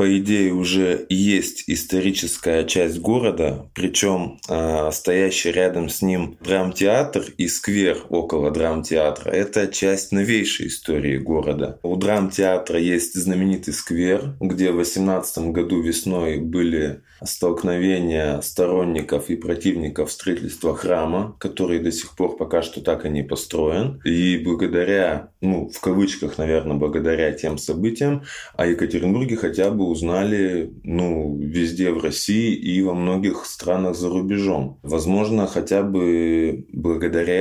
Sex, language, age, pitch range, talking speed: male, Russian, 20-39, 80-95 Hz, 125 wpm